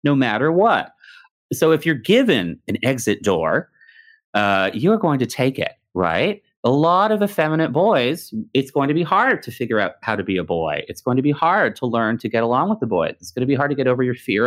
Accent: American